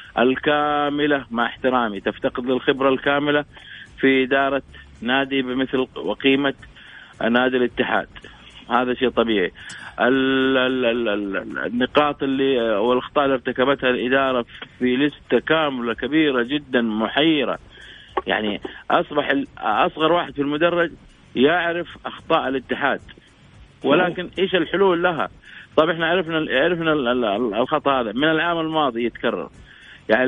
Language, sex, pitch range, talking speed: Arabic, male, 130-160 Hz, 105 wpm